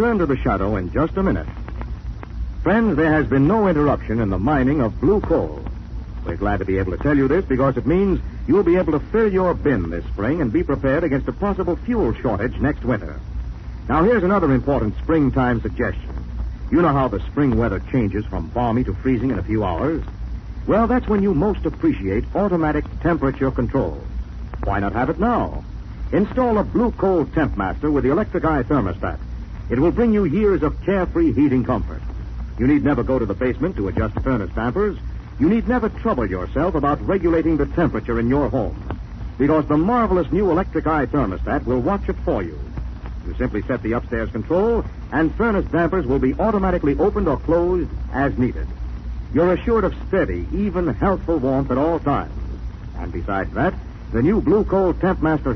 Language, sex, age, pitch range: English, male, 60-79, 105-170 Hz